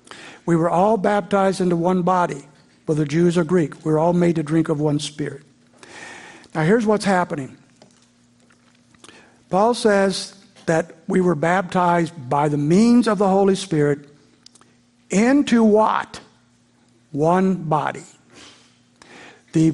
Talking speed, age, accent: 130 wpm, 60-79, American